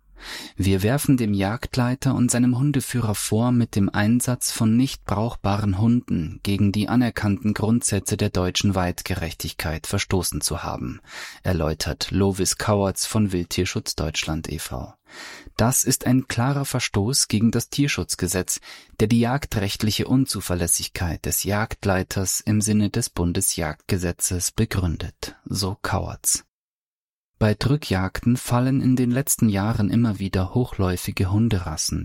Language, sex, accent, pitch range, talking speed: German, male, German, 90-120 Hz, 120 wpm